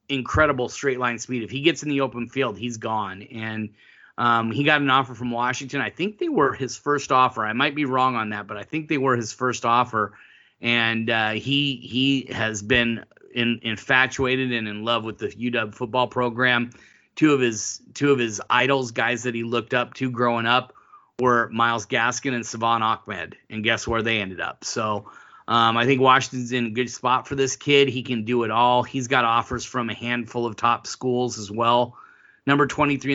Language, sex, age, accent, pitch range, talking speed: English, male, 30-49, American, 115-130 Hz, 210 wpm